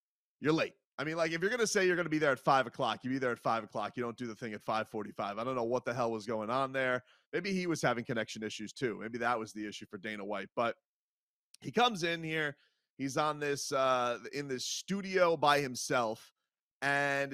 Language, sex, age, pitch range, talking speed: English, male, 30-49, 115-145 Hz, 245 wpm